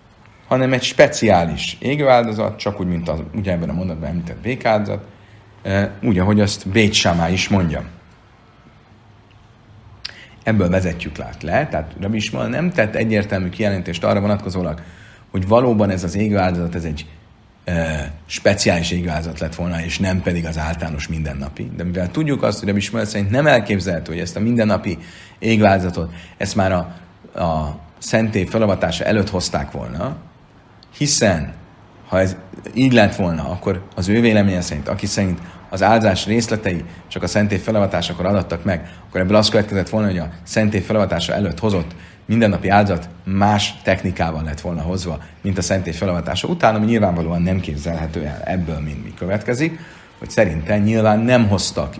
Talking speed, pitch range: 150 wpm, 85-110 Hz